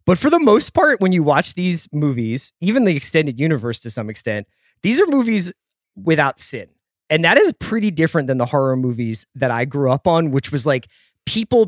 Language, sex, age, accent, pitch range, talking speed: English, male, 20-39, American, 130-170 Hz, 205 wpm